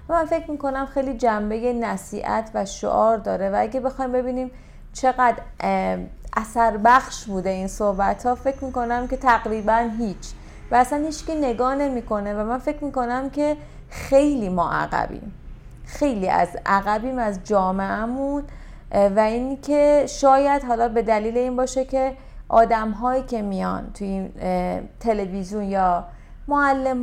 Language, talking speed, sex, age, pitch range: Persian, 140 wpm, female, 30-49, 200-255 Hz